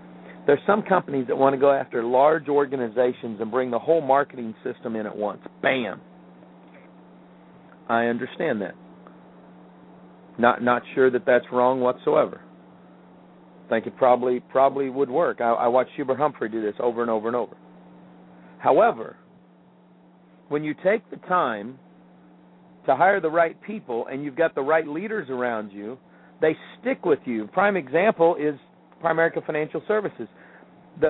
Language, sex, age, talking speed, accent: English, male, 50-69, 150 wpm, American